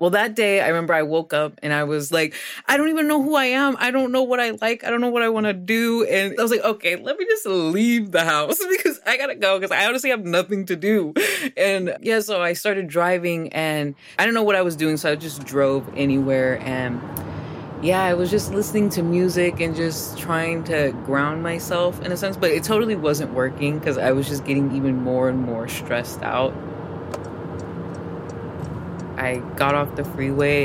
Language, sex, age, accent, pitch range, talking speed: English, female, 20-39, American, 135-185 Hz, 220 wpm